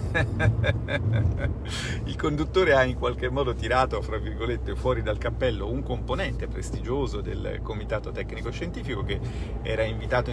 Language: Italian